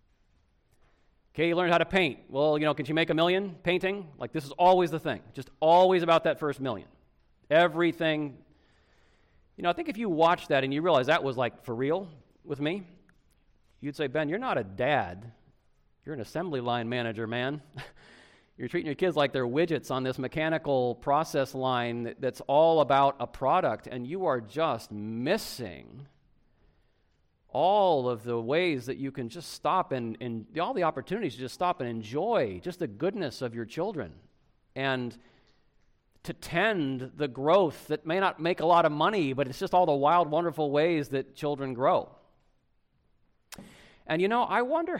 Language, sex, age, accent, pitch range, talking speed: English, male, 40-59, American, 125-170 Hz, 180 wpm